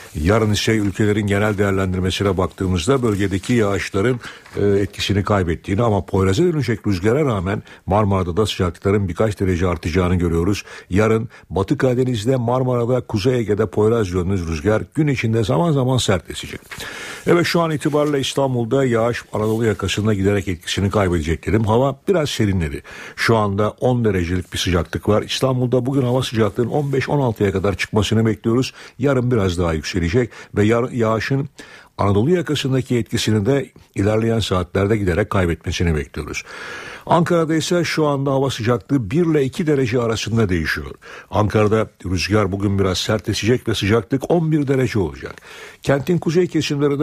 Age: 60-79